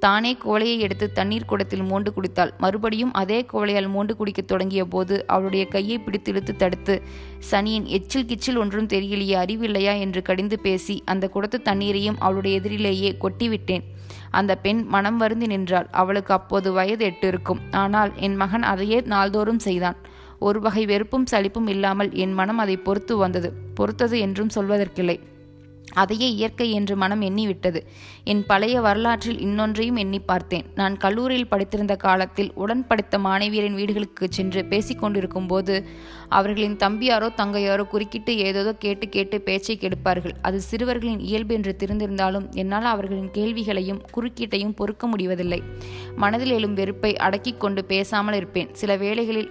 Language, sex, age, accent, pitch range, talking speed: Tamil, female, 20-39, native, 190-215 Hz, 135 wpm